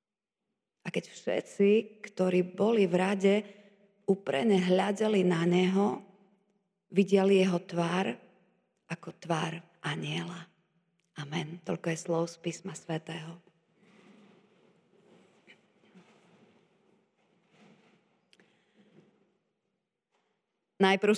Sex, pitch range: female, 180-205 Hz